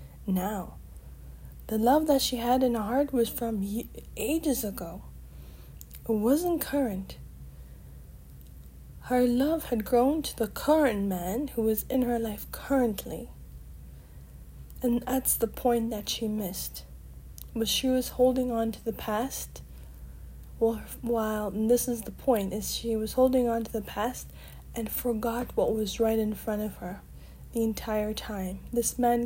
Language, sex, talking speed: English, female, 150 wpm